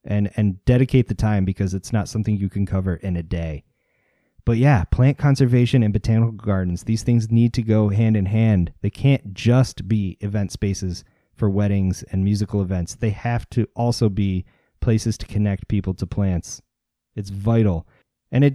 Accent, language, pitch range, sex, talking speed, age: American, English, 100-125 Hz, male, 180 wpm, 30-49